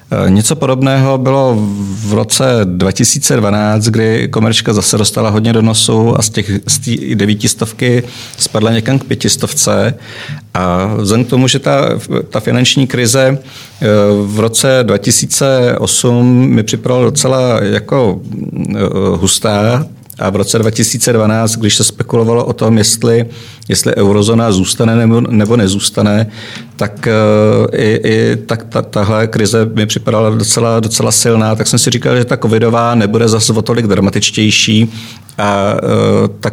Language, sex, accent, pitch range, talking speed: Czech, male, native, 105-115 Hz, 135 wpm